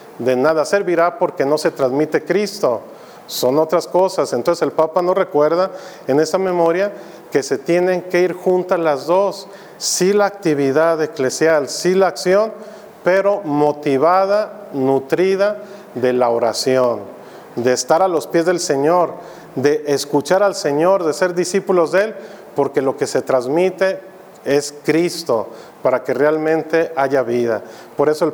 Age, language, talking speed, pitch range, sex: 40-59, Spanish, 150 wpm, 145-185 Hz, male